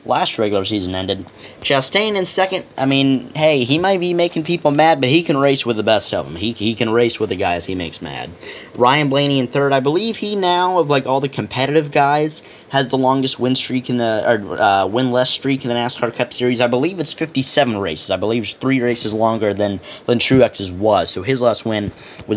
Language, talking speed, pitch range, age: English, 235 wpm, 110-140 Hz, 10-29